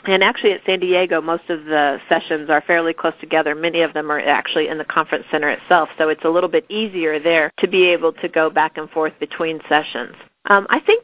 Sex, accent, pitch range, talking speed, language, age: female, American, 155-185 Hz, 235 wpm, English, 40-59